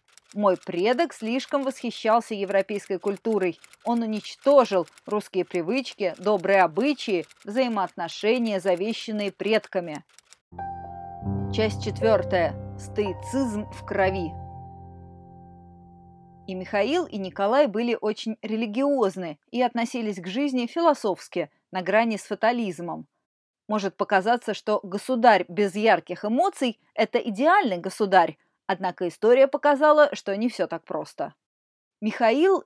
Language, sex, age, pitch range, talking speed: Russian, female, 30-49, 185-240 Hz, 100 wpm